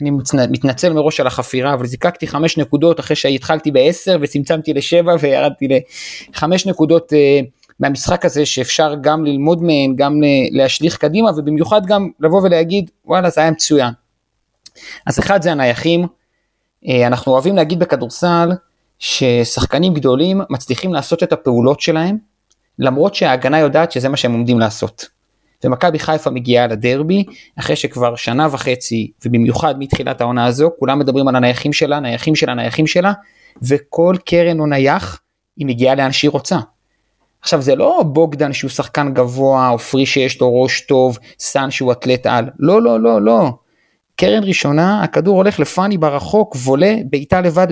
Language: Hebrew